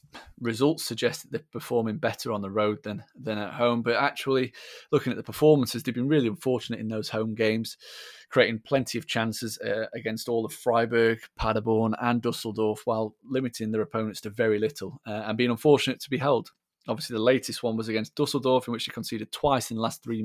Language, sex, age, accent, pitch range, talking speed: English, male, 20-39, British, 110-130 Hz, 205 wpm